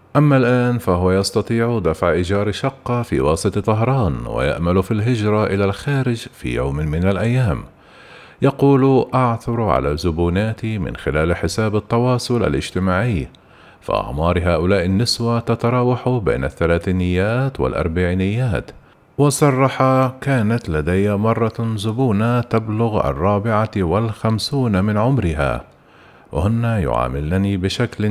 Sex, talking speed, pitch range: male, 100 wpm, 90-120 Hz